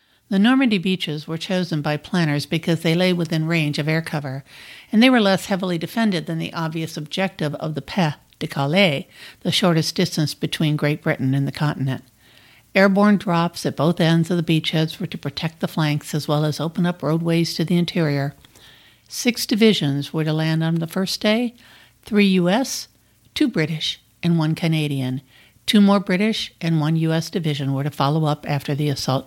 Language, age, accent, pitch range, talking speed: English, 60-79, American, 145-180 Hz, 180 wpm